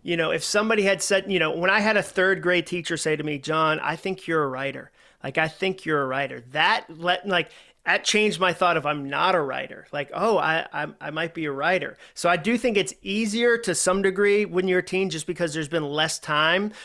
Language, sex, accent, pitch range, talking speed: English, male, American, 155-195 Hz, 250 wpm